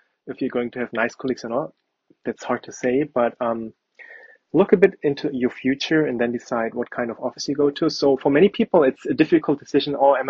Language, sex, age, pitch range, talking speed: Persian, male, 20-39, 125-145 Hz, 240 wpm